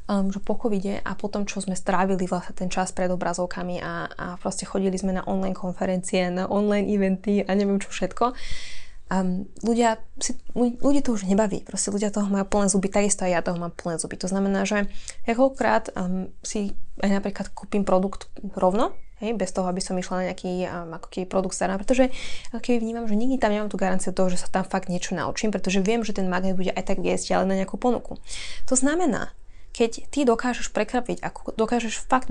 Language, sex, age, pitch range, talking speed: Slovak, female, 20-39, 185-220 Hz, 210 wpm